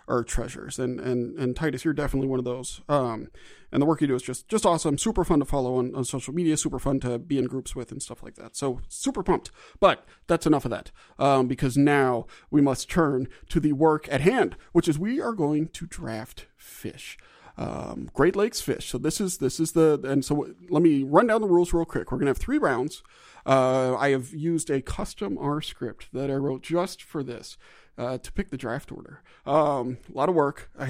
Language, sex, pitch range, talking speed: English, male, 130-170 Hz, 235 wpm